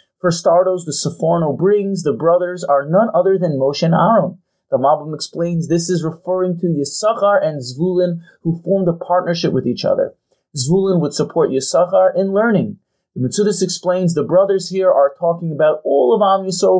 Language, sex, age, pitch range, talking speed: English, male, 30-49, 155-190 Hz, 180 wpm